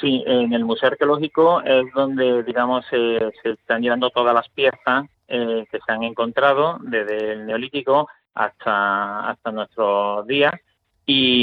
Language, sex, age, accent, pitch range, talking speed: Spanish, male, 30-49, Spanish, 110-130 Hz, 145 wpm